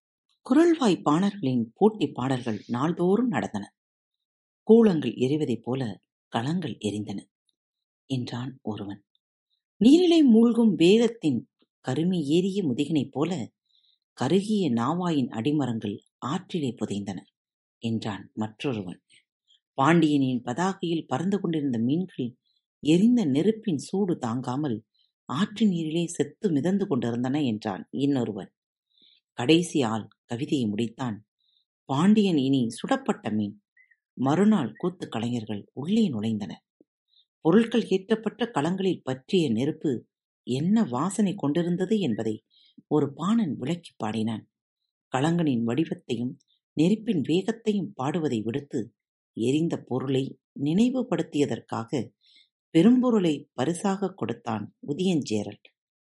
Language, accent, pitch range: Tamil, native, 120-190 Hz